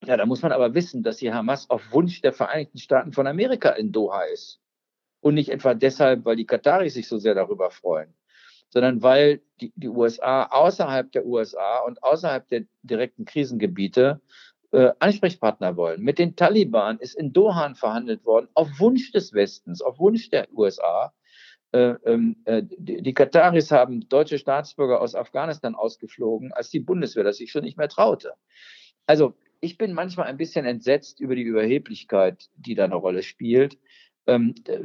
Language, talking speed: German, 170 wpm